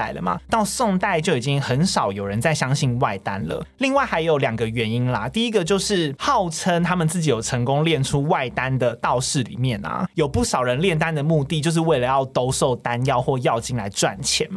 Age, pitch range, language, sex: 20-39, 130-175 Hz, Chinese, male